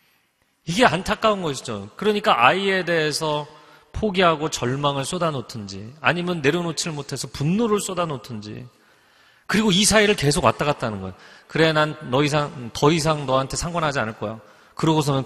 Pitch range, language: 115-170 Hz, Korean